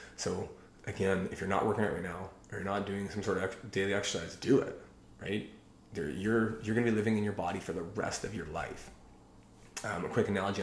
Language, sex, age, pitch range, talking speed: English, male, 30-49, 95-110 Hz, 225 wpm